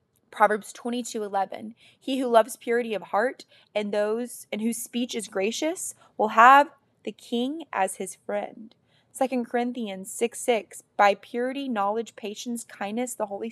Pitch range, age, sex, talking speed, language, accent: 205-255 Hz, 20-39, female, 150 wpm, English, American